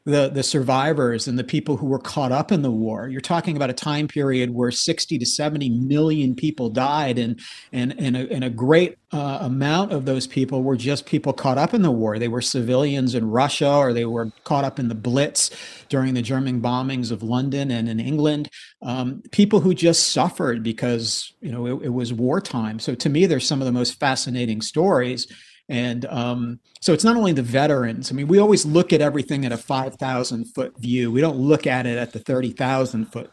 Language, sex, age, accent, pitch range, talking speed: English, male, 50-69, American, 125-145 Hz, 215 wpm